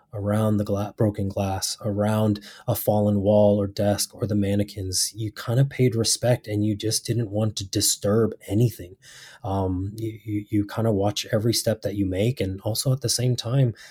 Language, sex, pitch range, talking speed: English, male, 100-120 Hz, 195 wpm